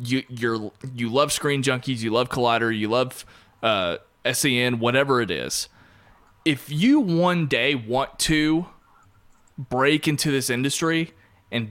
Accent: American